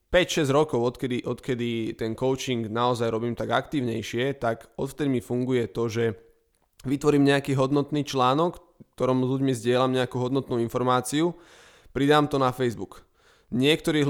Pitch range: 120-140 Hz